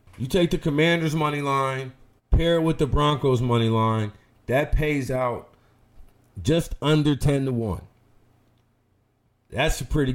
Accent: American